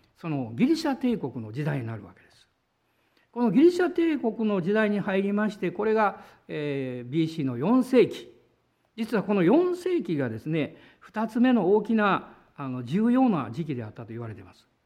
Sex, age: male, 50-69